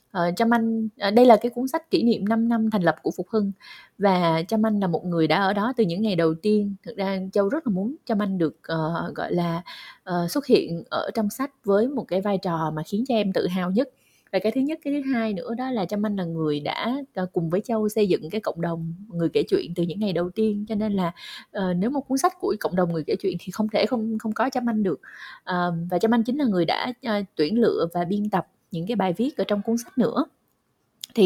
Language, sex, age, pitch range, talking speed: Vietnamese, female, 20-39, 180-235 Hz, 270 wpm